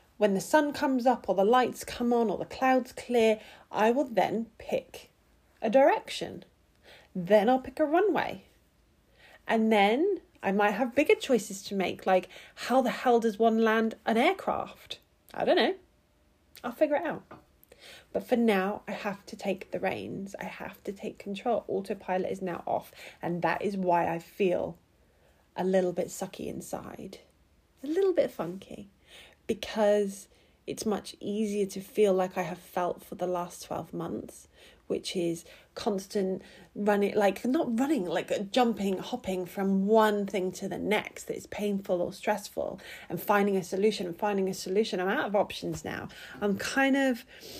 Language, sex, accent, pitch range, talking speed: English, female, British, 185-230 Hz, 170 wpm